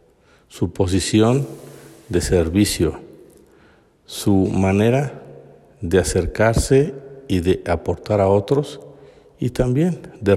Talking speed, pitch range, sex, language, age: 95 wpm, 95-120 Hz, male, Spanish, 50-69